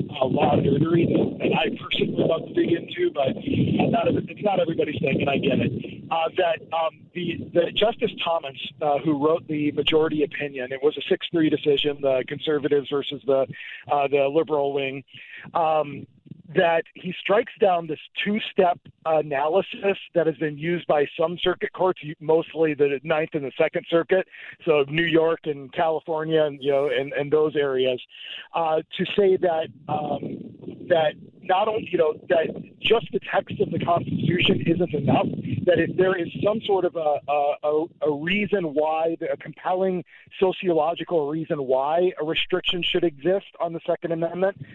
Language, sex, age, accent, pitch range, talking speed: English, male, 50-69, American, 150-175 Hz, 170 wpm